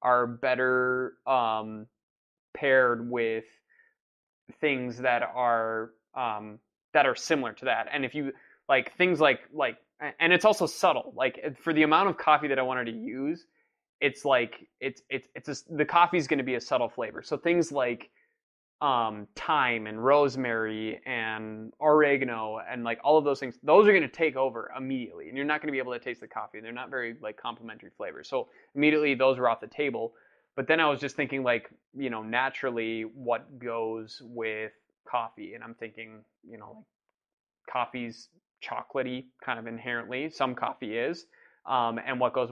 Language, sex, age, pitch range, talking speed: English, male, 20-39, 115-140 Hz, 180 wpm